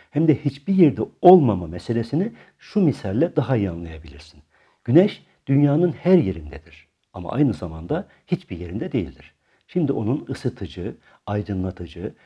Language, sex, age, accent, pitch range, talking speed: Turkish, male, 60-79, native, 85-135 Hz, 120 wpm